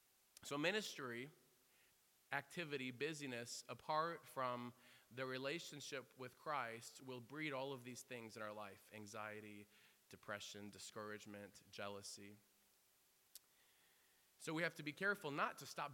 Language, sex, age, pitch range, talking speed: English, male, 20-39, 115-145 Hz, 120 wpm